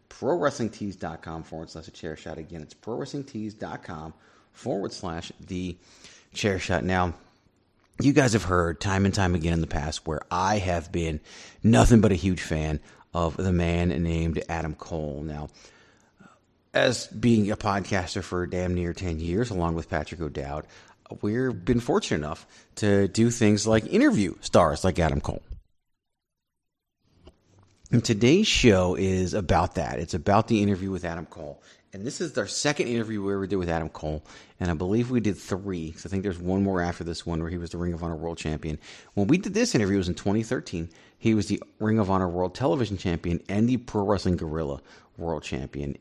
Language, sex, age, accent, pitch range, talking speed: English, male, 30-49, American, 80-105 Hz, 185 wpm